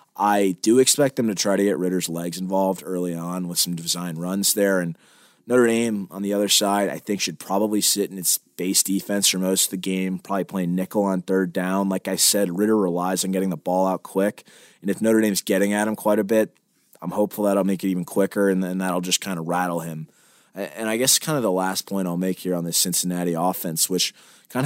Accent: American